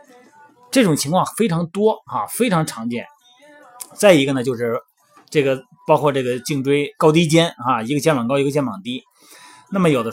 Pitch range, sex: 130-210 Hz, male